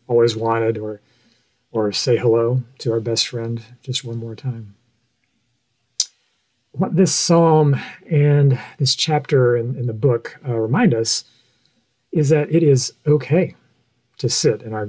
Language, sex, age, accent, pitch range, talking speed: English, male, 40-59, American, 115-145 Hz, 145 wpm